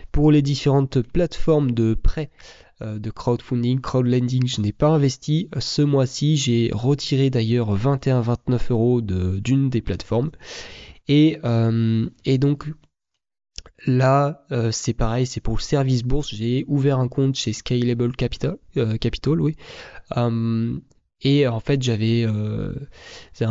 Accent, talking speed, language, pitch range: French, 140 wpm, French, 115-135 Hz